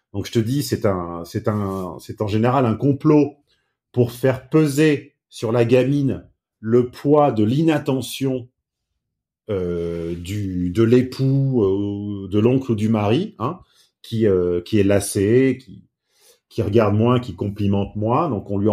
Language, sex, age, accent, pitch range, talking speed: French, male, 40-59, French, 105-145 Hz, 155 wpm